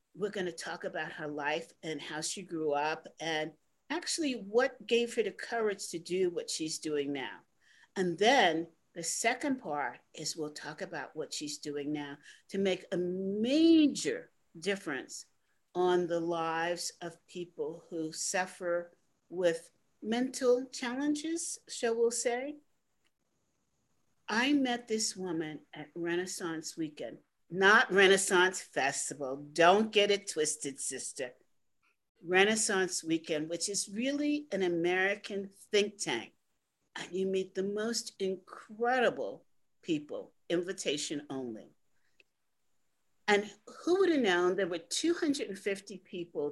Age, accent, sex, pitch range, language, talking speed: 40-59, American, female, 165-225 Hz, English, 125 wpm